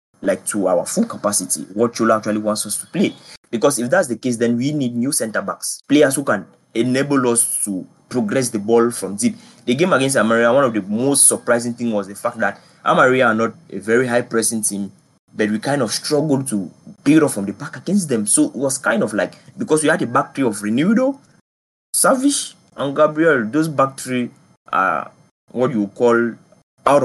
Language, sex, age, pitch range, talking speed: English, male, 20-39, 110-135 Hz, 200 wpm